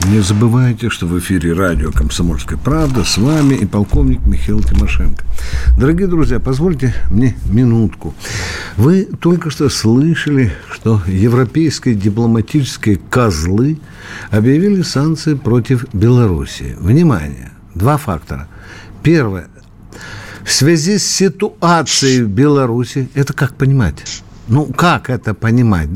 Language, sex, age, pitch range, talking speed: Russian, male, 60-79, 100-150 Hz, 110 wpm